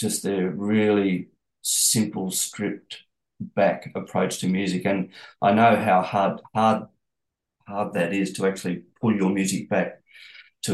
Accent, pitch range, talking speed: Australian, 95-110 Hz, 140 wpm